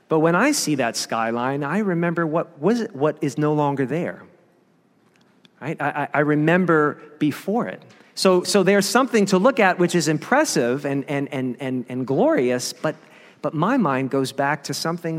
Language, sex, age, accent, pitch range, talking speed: English, male, 40-59, American, 150-200 Hz, 180 wpm